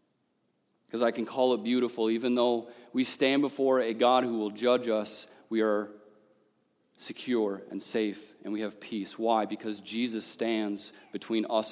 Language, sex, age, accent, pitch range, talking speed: English, male, 40-59, American, 110-135 Hz, 165 wpm